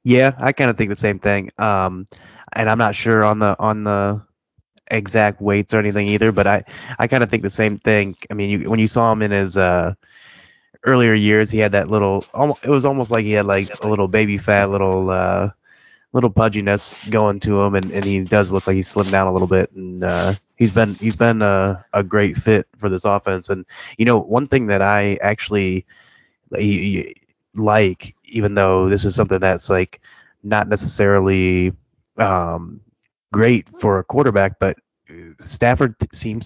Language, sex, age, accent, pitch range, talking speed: English, male, 20-39, American, 95-110 Hz, 190 wpm